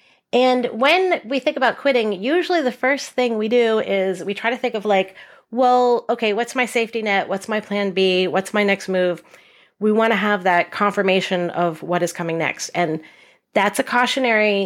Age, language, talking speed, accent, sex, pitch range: 30-49, English, 195 wpm, American, female, 190-250 Hz